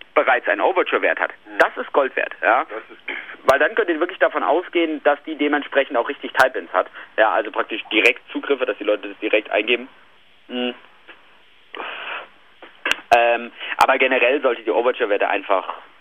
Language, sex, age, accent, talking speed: English, male, 40-59, German, 155 wpm